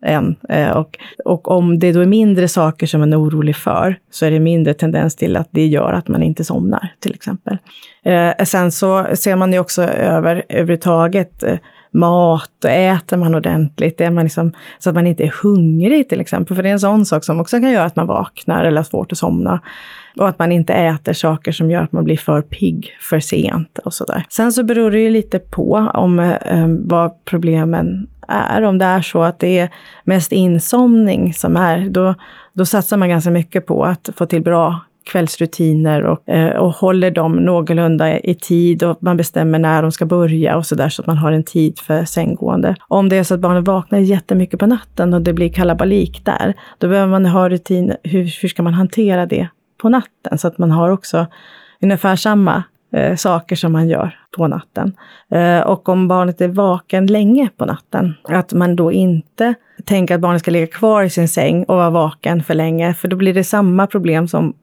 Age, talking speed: 30-49, 210 wpm